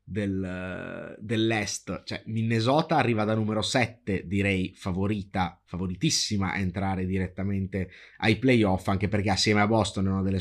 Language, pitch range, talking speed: Italian, 95-115 Hz, 140 wpm